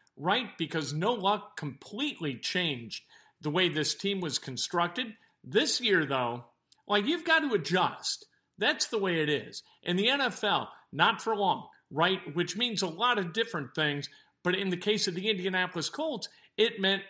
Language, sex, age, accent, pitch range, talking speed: English, male, 50-69, American, 155-215 Hz, 170 wpm